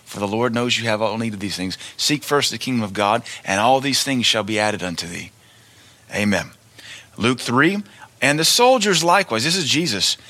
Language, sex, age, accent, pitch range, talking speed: English, male, 30-49, American, 110-145 Hz, 210 wpm